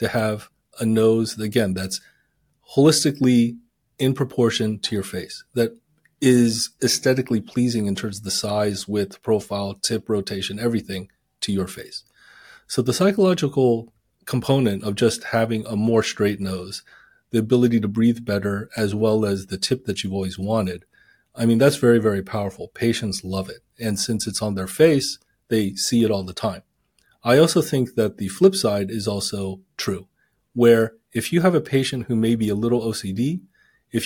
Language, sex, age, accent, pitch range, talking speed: English, male, 30-49, American, 105-125 Hz, 175 wpm